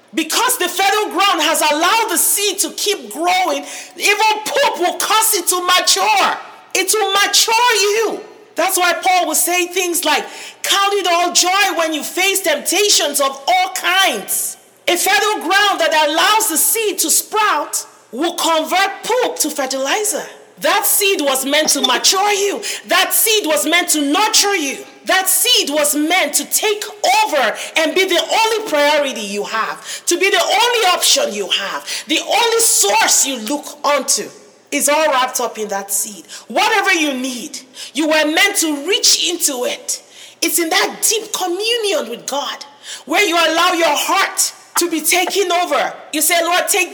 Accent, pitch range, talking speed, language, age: Nigerian, 310-395 Hz, 170 wpm, English, 40-59